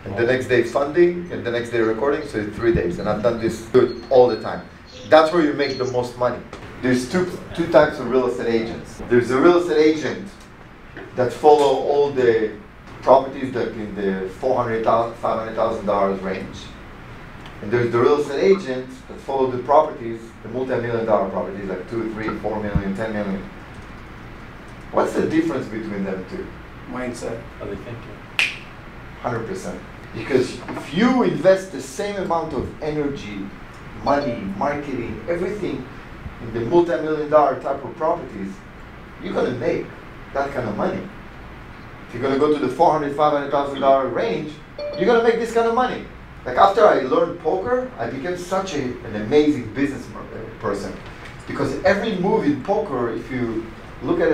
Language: English